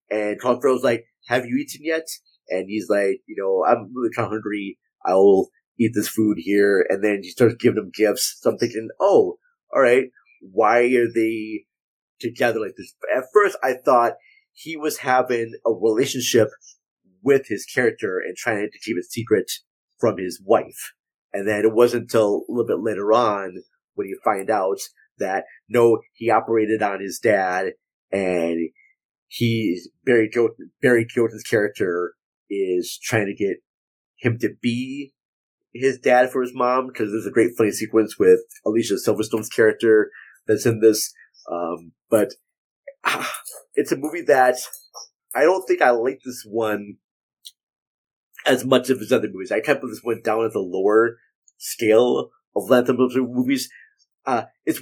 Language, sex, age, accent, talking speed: English, male, 30-49, American, 165 wpm